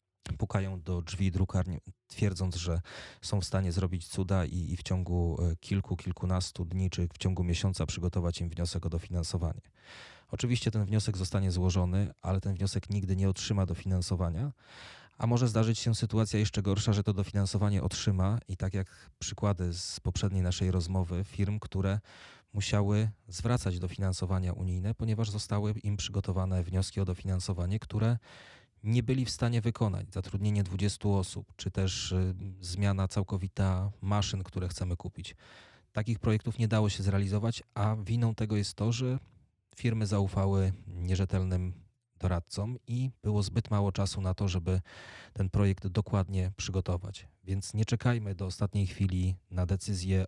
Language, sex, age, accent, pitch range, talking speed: Polish, male, 30-49, native, 95-105 Hz, 150 wpm